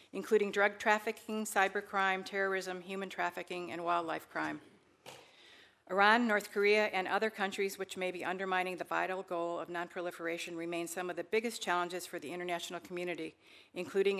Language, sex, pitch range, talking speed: English, female, 175-200 Hz, 150 wpm